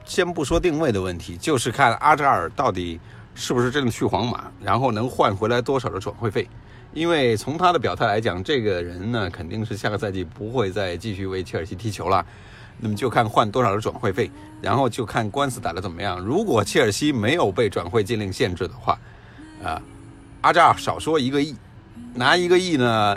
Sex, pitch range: male, 100-125 Hz